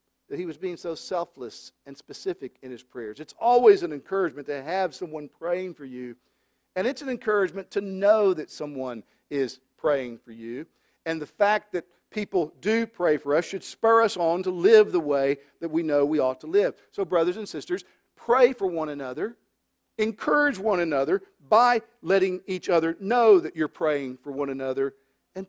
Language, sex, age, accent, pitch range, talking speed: English, male, 50-69, American, 165-230 Hz, 190 wpm